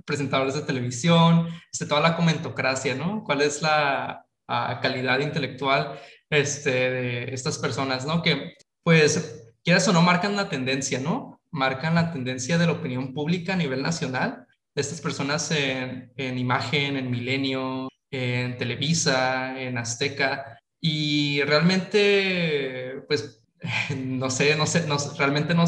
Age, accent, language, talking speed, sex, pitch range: 20-39, Mexican, Spanish, 135 wpm, male, 130-160 Hz